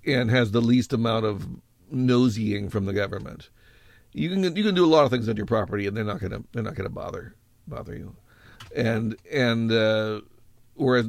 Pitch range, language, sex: 105-125 Hz, English, male